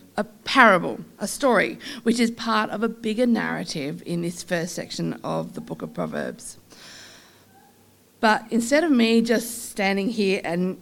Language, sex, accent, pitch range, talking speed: English, female, Australian, 175-230 Hz, 155 wpm